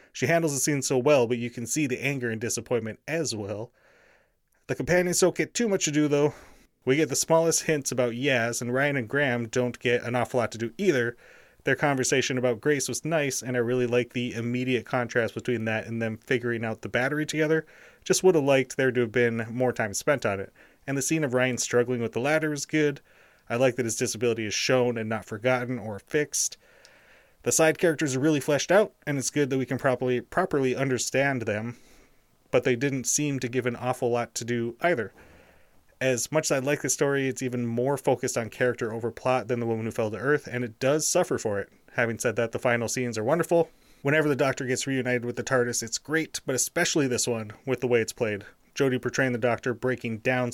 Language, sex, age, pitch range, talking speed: English, male, 30-49, 120-145 Hz, 230 wpm